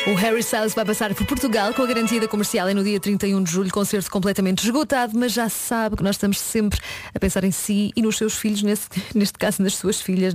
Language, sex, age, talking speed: Portuguese, female, 20-39, 245 wpm